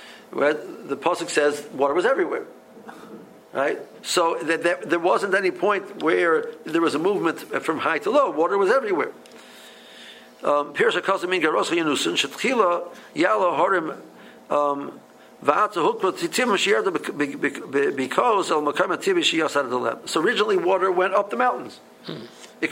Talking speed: 85 wpm